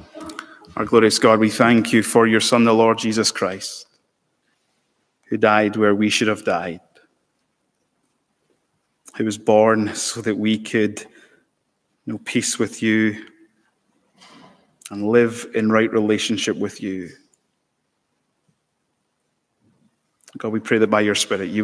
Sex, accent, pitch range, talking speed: male, British, 110-135 Hz, 130 wpm